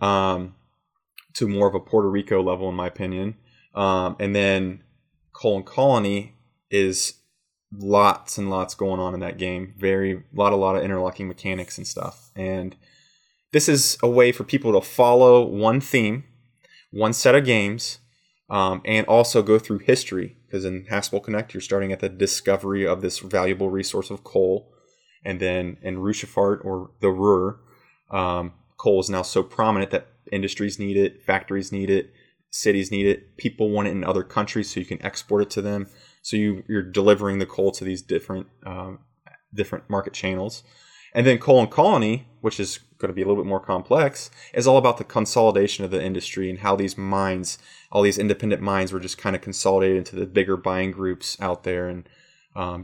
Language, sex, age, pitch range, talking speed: English, male, 20-39, 95-110 Hz, 185 wpm